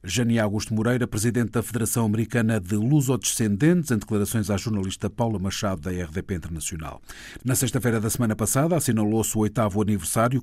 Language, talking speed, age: Portuguese, 155 wpm, 50-69